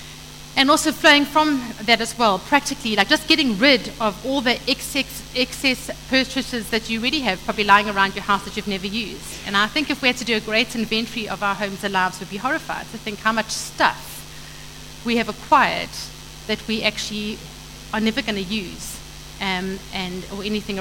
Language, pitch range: English, 200-245 Hz